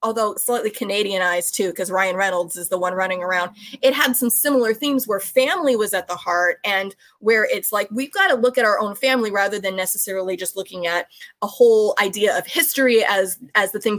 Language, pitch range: English, 195-265 Hz